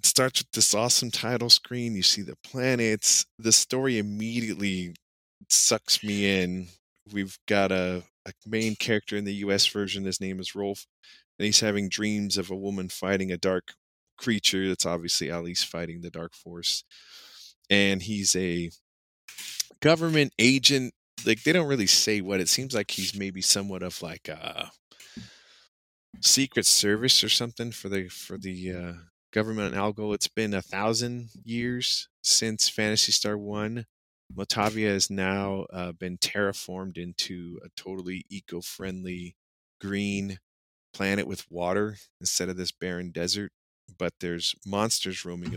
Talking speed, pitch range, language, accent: 150 wpm, 90-105 Hz, English, American